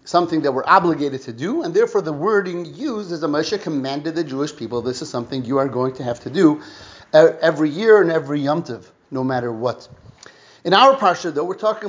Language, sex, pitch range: English, male, 155-225 Hz